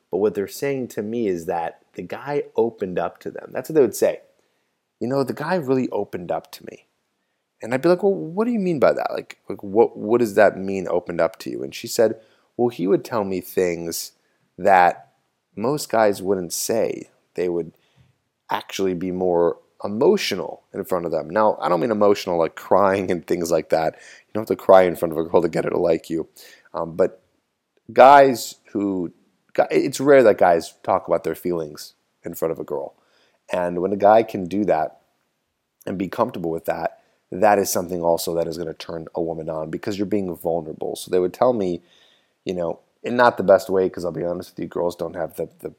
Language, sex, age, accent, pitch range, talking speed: English, male, 30-49, American, 85-120 Hz, 220 wpm